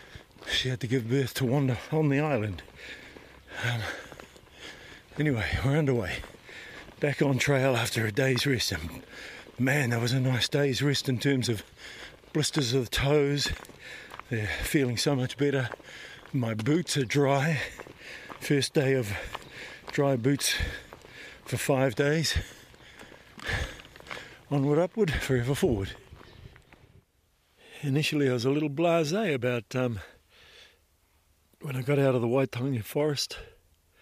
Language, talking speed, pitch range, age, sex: English, 130 wpm, 110-140 Hz, 50-69, male